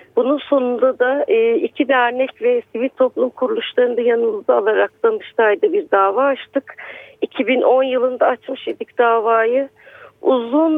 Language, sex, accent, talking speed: Turkish, female, native, 120 wpm